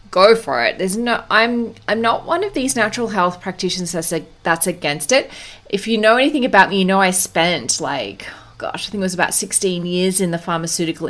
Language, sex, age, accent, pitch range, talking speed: English, female, 30-49, Australian, 170-225 Hz, 220 wpm